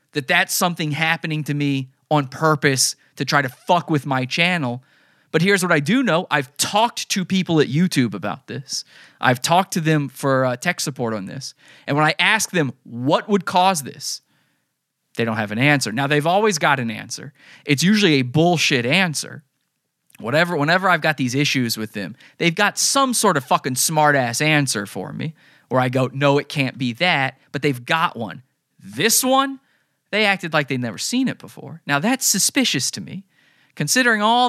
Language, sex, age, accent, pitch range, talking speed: English, male, 20-39, American, 140-190 Hz, 195 wpm